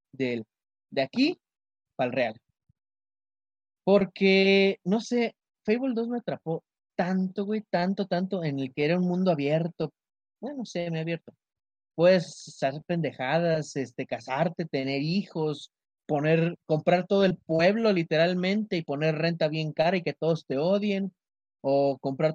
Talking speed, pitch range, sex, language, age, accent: 150 wpm, 135-180 Hz, male, Spanish, 30-49, Mexican